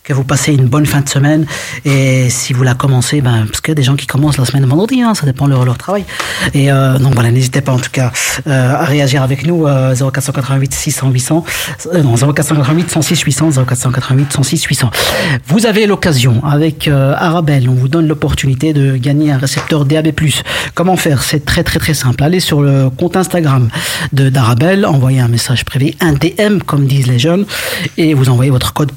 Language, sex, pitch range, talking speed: French, male, 130-160 Hz, 195 wpm